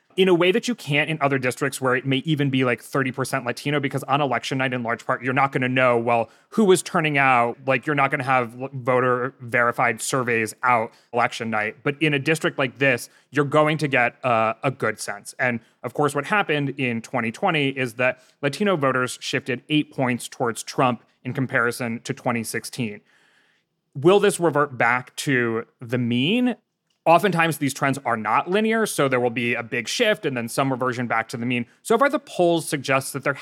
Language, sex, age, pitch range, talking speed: English, male, 30-49, 120-150 Hz, 205 wpm